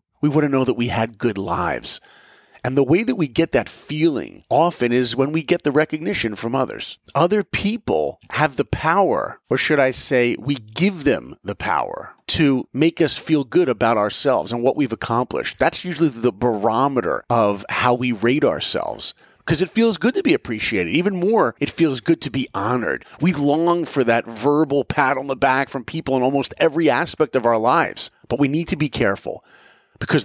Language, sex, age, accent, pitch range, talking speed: English, male, 40-59, American, 115-150 Hz, 200 wpm